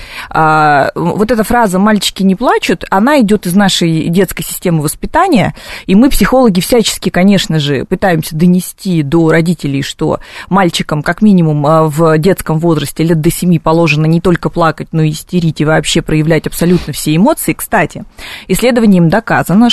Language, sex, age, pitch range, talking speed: Russian, female, 30-49, 165-215 Hz, 150 wpm